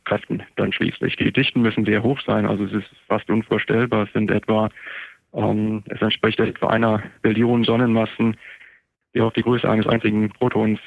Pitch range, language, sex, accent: 105-115 Hz, German, male, German